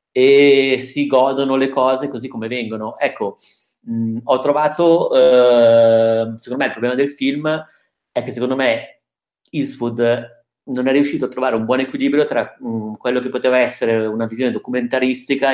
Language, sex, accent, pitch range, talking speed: Italian, male, native, 115-130 Hz, 160 wpm